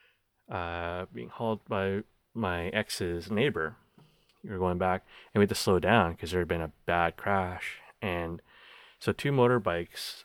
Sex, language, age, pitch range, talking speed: male, English, 30-49, 85-105 Hz, 165 wpm